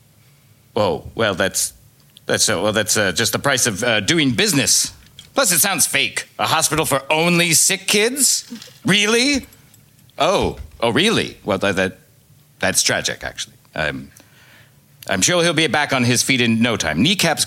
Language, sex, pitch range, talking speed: English, male, 110-160 Hz, 170 wpm